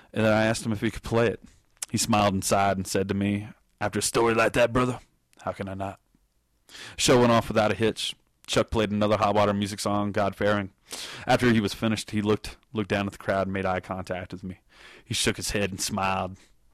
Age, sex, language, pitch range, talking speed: 20-39, male, English, 95-110 Hz, 235 wpm